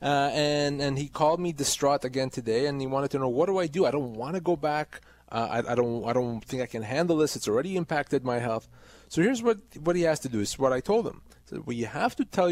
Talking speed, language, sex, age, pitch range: 290 wpm, English, male, 30-49, 130-170 Hz